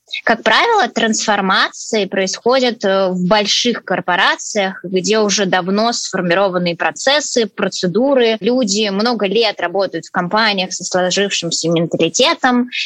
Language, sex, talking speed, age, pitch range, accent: Russian, female, 105 wpm, 20-39, 190-235 Hz, native